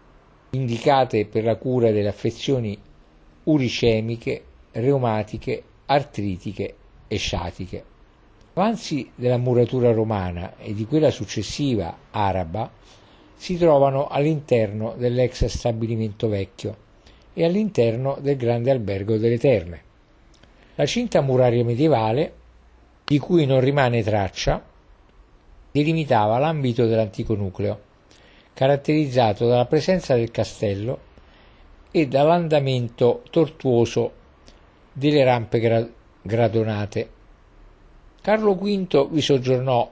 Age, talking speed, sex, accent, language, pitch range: 50-69, 90 wpm, male, native, Italian, 105-140 Hz